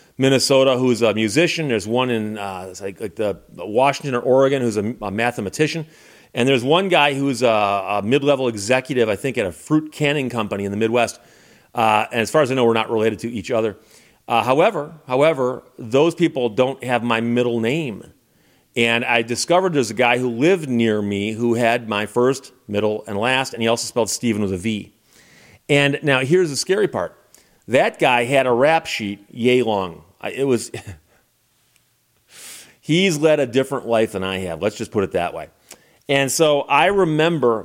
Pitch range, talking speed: 115-145 Hz, 190 wpm